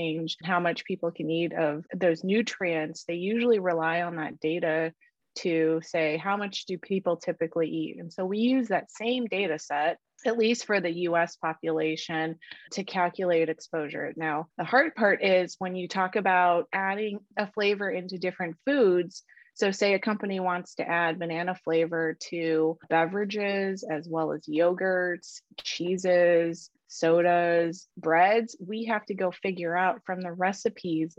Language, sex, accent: English, female, American